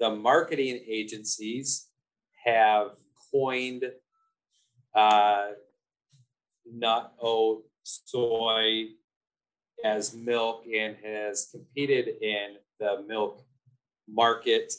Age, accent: 30-49, American